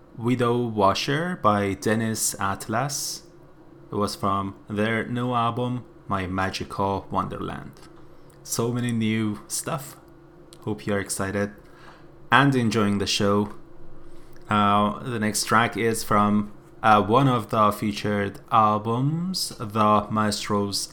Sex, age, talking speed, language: male, 20-39, 115 wpm, English